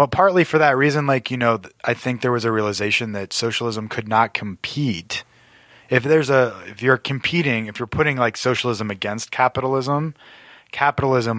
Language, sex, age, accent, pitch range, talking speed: English, male, 20-39, American, 105-130 Hz, 175 wpm